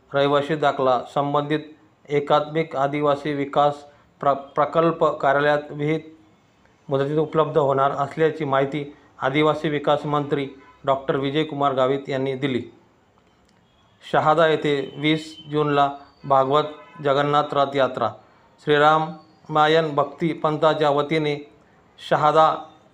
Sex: male